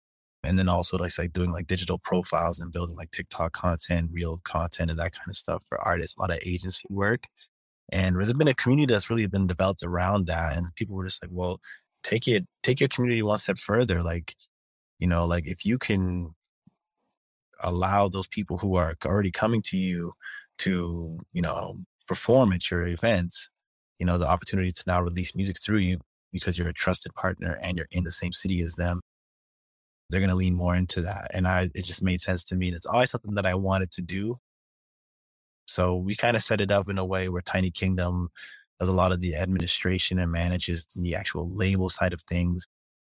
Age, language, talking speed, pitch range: 20-39, English, 210 wpm, 85-95 Hz